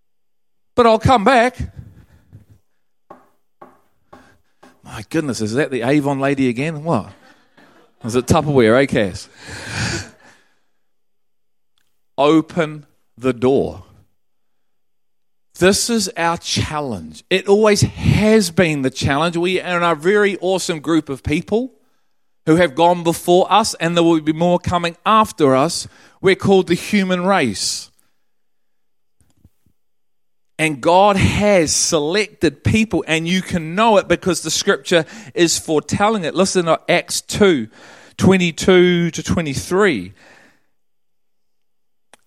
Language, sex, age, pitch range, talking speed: English, male, 40-59, 130-190 Hz, 120 wpm